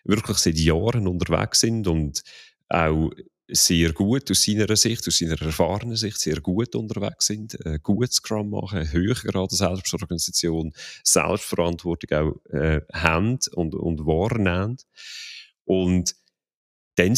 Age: 40-59